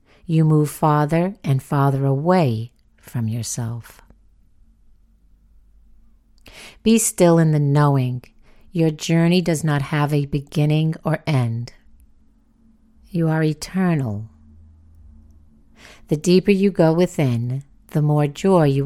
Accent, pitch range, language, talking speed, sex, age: American, 110-165 Hz, English, 110 wpm, female, 50-69